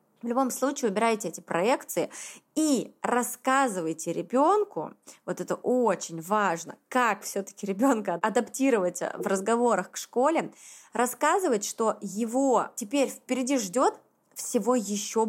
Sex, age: female, 20-39